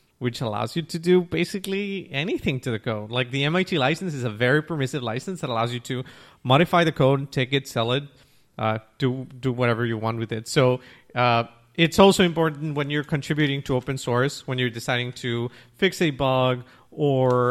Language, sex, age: English, male, 30-49